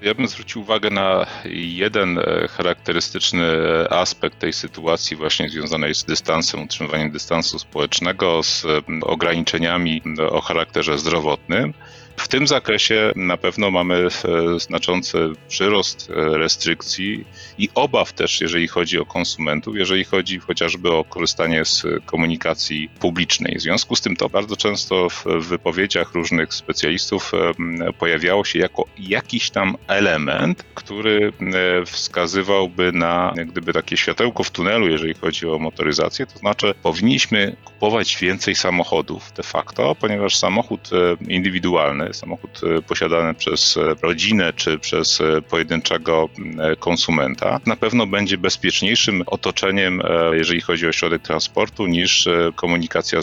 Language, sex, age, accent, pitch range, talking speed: Polish, male, 40-59, native, 80-95 Hz, 120 wpm